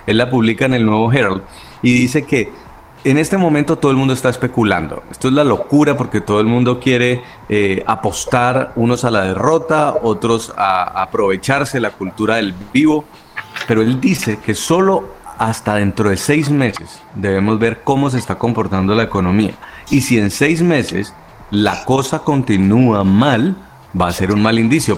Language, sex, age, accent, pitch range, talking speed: Spanish, male, 30-49, Colombian, 105-135 Hz, 175 wpm